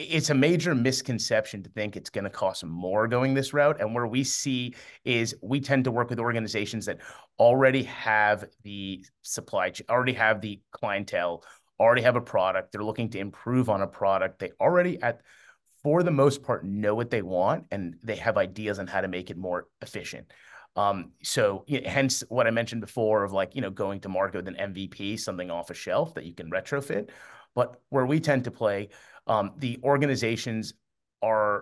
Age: 30-49